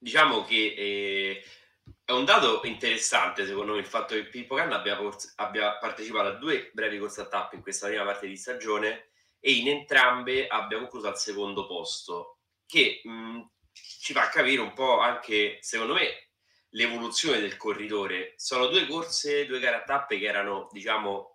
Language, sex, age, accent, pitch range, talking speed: Italian, male, 20-39, native, 100-125 Hz, 170 wpm